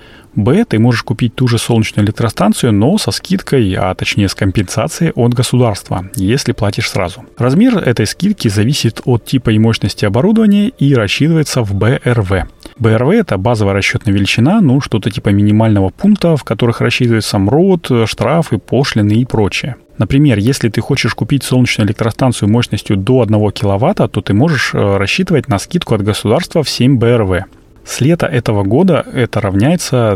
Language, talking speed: Russian, 155 wpm